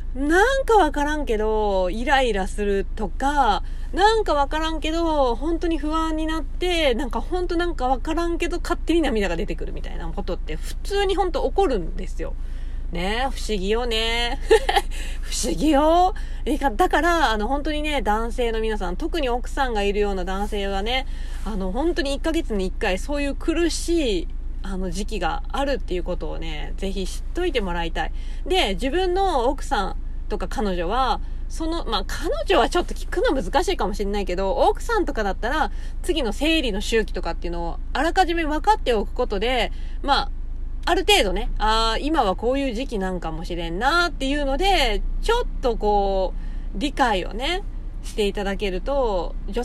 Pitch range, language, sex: 205-330 Hz, Japanese, female